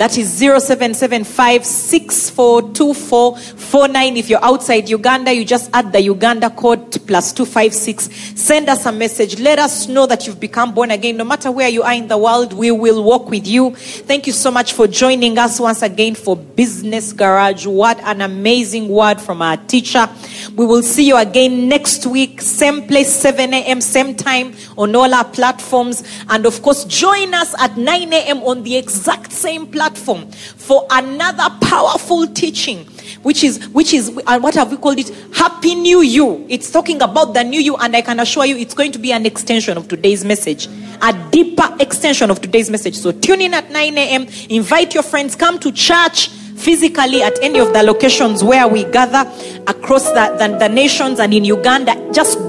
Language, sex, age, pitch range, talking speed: English, female, 30-49, 225-275 Hz, 185 wpm